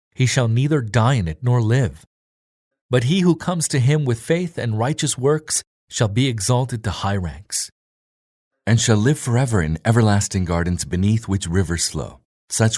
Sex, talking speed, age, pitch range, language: male, 175 wpm, 40-59, 90-120 Hz, English